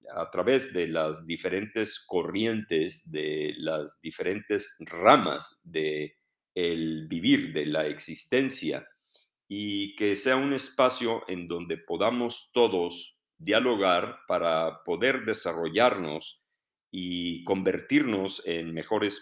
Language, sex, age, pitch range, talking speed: Spanish, male, 50-69, 85-115 Hz, 105 wpm